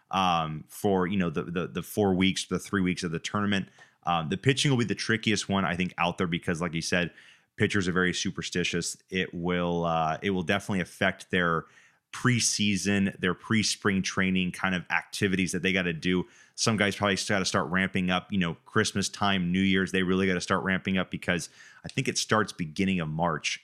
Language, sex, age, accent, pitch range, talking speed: English, male, 30-49, American, 90-100 Hz, 215 wpm